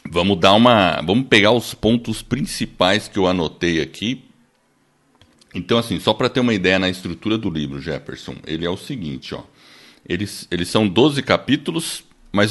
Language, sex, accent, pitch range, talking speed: Portuguese, male, Brazilian, 95-125 Hz, 170 wpm